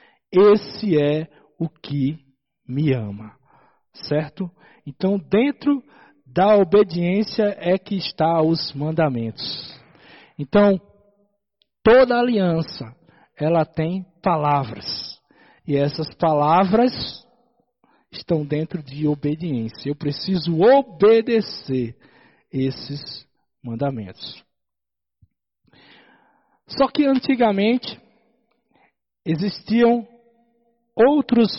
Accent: Brazilian